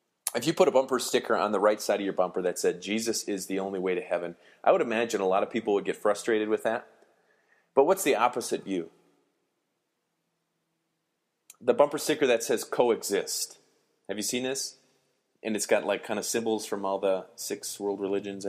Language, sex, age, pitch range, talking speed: English, male, 30-49, 95-140 Hz, 200 wpm